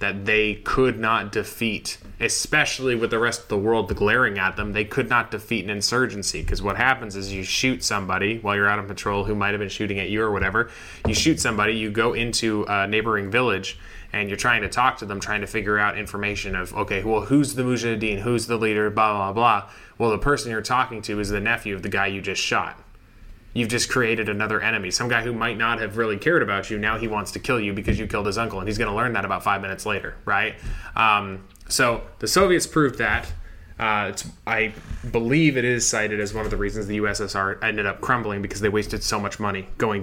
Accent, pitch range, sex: American, 100-115 Hz, male